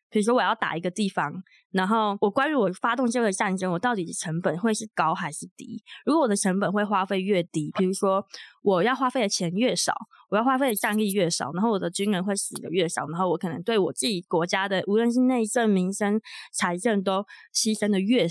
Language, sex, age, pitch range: Chinese, female, 20-39, 190-235 Hz